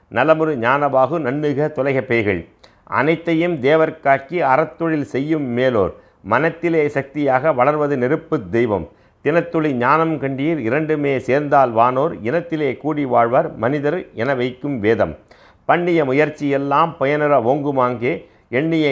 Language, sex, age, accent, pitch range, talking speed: Tamil, male, 50-69, native, 120-155 Hz, 100 wpm